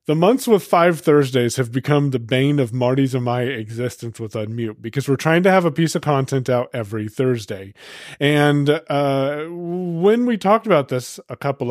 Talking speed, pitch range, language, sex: 190 wpm, 125-160 Hz, English, male